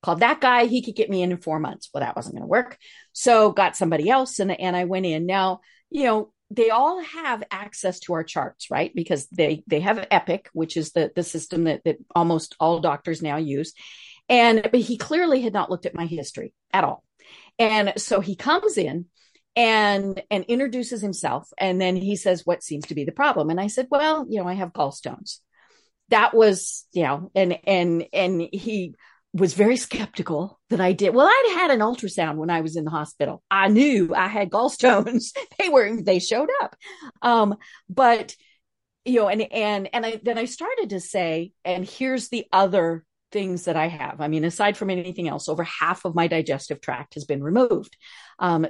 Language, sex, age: English, female, 50-69